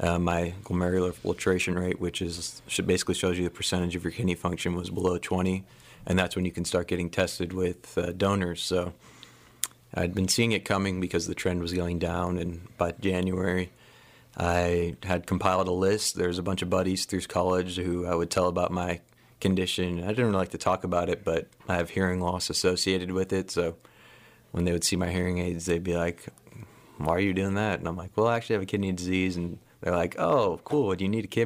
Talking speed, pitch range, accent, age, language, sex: 215 wpm, 85-95 Hz, American, 30-49, English, male